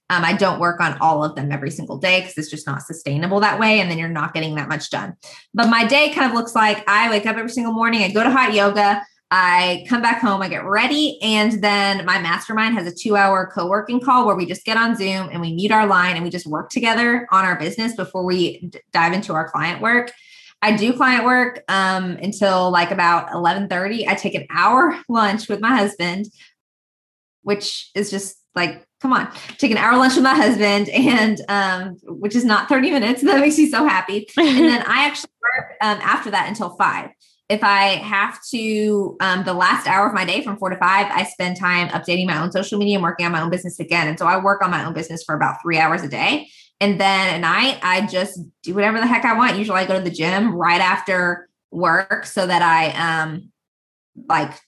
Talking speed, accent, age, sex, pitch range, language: 230 wpm, American, 20-39, female, 175-225 Hz, English